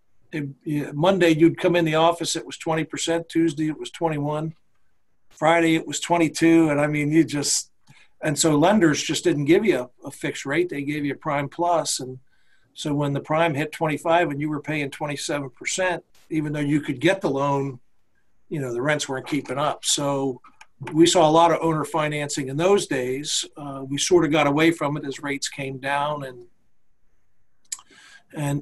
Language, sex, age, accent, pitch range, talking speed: English, male, 50-69, American, 140-160 Hz, 190 wpm